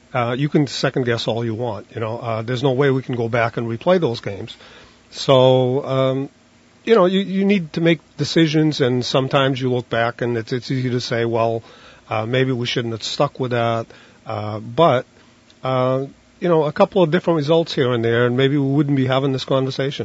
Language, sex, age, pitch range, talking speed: English, male, 40-59, 120-140 Hz, 220 wpm